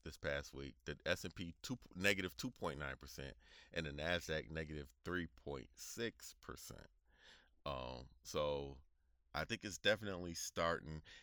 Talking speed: 95 wpm